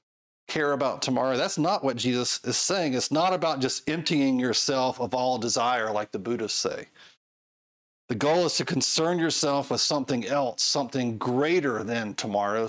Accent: American